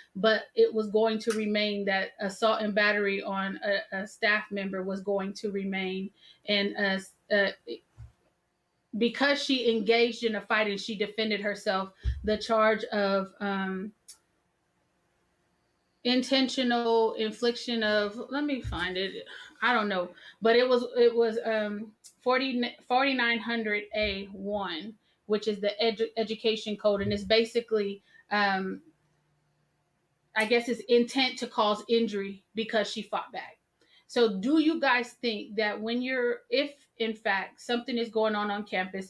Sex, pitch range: female, 195-230 Hz